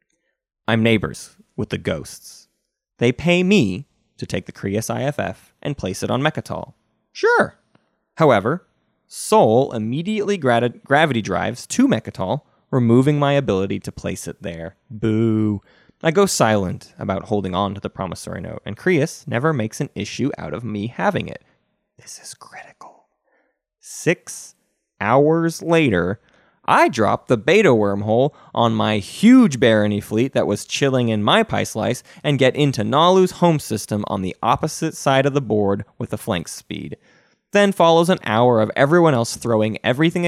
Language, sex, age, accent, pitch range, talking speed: English, male, 20-39, American, 110-155 Hz, 155 wpm